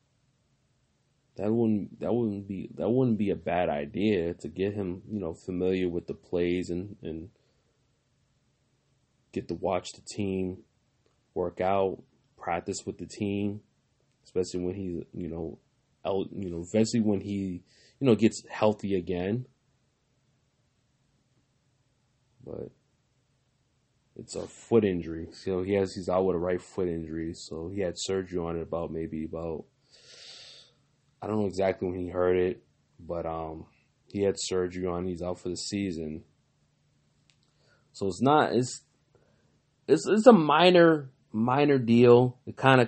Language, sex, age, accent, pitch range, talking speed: English, male, 20-39, American, 90-125 Hz, 145 wpm